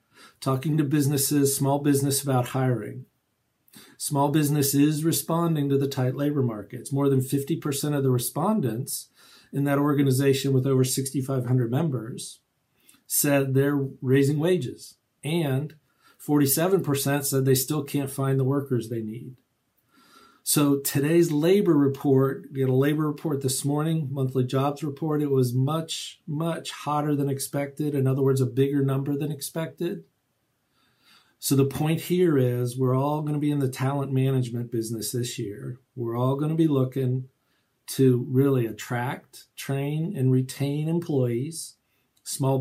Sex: male